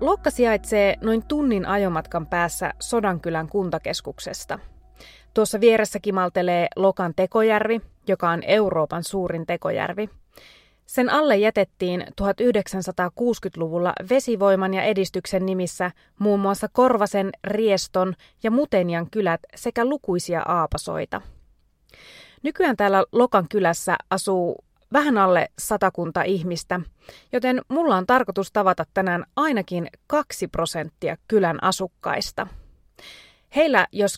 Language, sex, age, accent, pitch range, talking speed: Finnish, female, 20-39, native, 180-245 Hz, 100 wpm